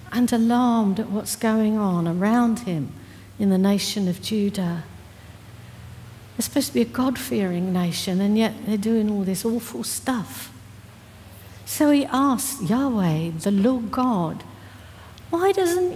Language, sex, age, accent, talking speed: English, female, 60-79, British, 140 wpm